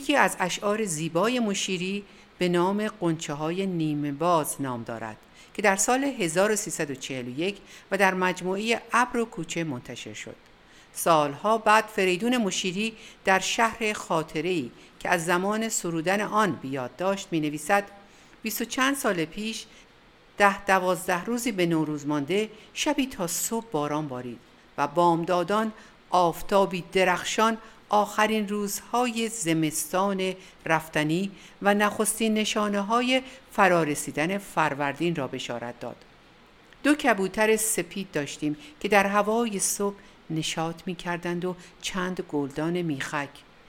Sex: female